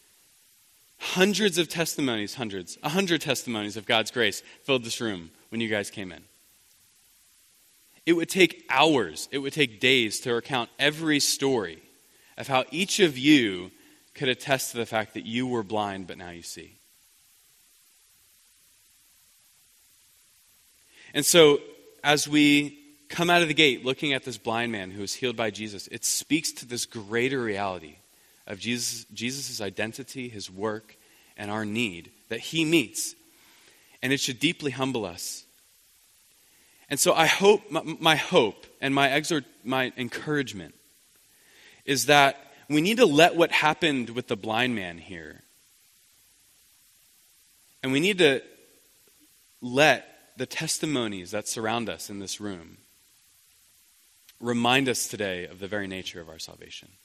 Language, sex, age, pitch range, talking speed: English, male, 20-39, 110-155 Hz, 145 wpm